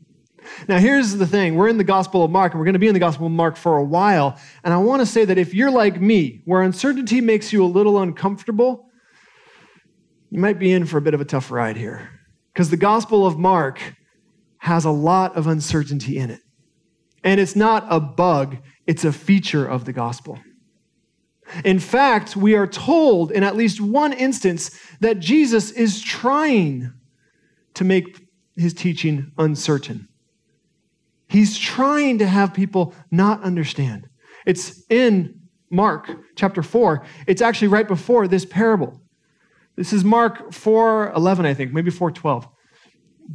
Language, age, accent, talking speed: English, 40-59, American, 165 wpm